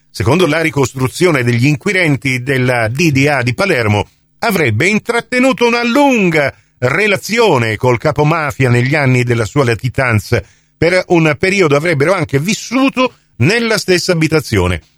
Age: 50-69